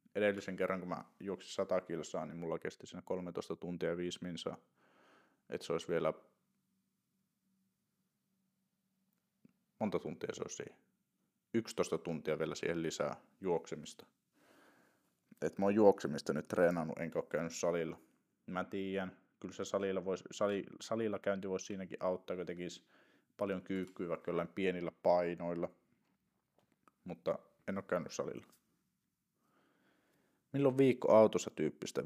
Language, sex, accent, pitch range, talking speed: Finnish, male, native, 90-115 Hz, 125 wpm